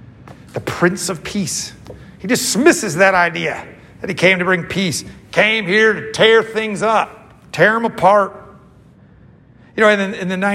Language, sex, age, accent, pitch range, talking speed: English, male, 50-69, American, 160-205 Hz, 155 wpm